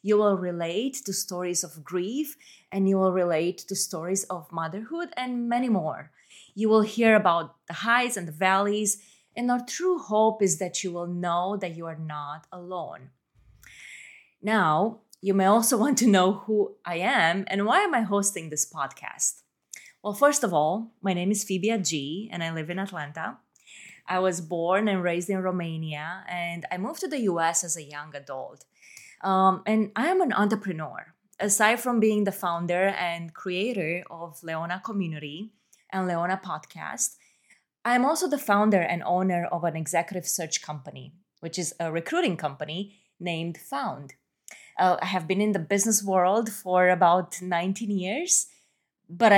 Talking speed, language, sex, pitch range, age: 170 wpm, English, female, 170-205 Hz, 20-39